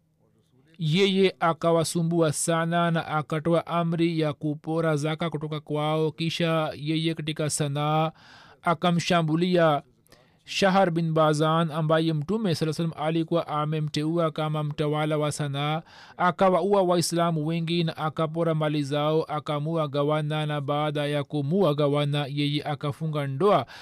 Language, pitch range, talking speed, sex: Swahili, 150-170 Hz, 115 wpm, male